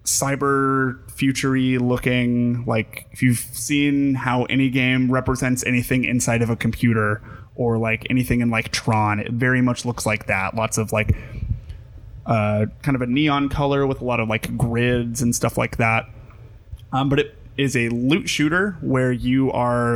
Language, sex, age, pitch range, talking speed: English, male, 20-39, 115-130 Hz, 170 wpm